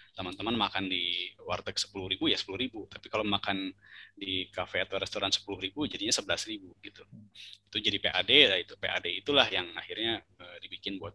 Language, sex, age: Indonesian, male, 20-39